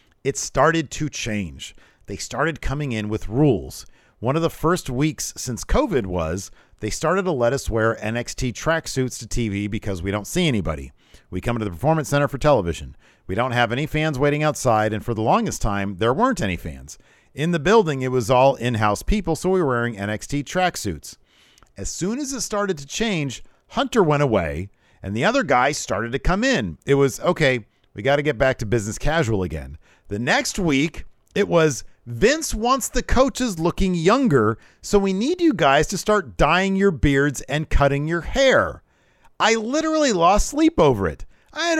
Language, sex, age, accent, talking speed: English, male, 50-69, American, 190 wpm